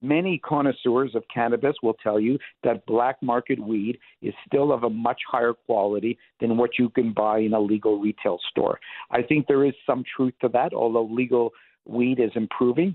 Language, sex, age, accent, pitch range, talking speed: English, male, 50-69, American, 115-135 Hz, 190 wpm